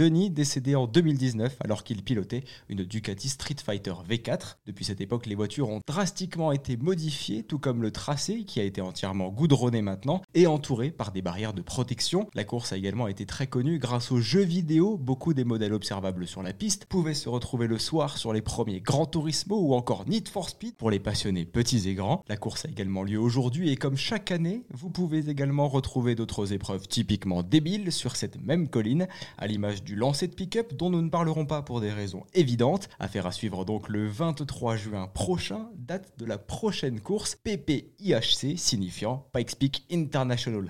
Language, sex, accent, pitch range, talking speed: French, male, French, 105-155 Hz, 195 wpm